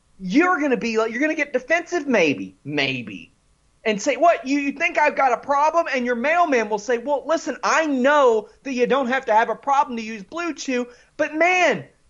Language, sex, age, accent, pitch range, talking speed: English, male, 30-49, American, 200-315 Hz, 225 wpm